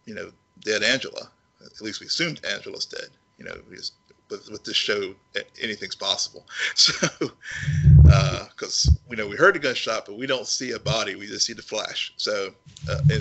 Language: English